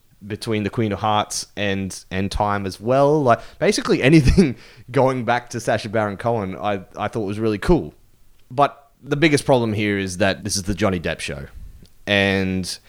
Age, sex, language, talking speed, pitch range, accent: 20-39, male, English, 180 wpm, 95-120 Hz, Australian